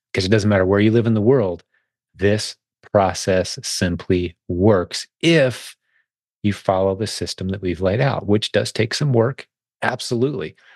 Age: 30-49